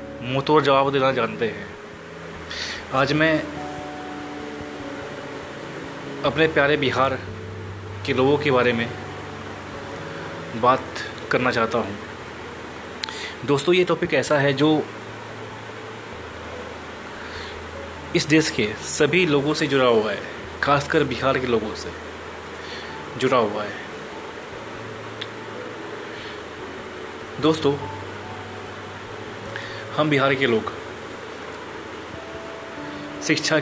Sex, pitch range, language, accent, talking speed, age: male, 110-145 Hz, Hindi, native, 85 wpm, 20-39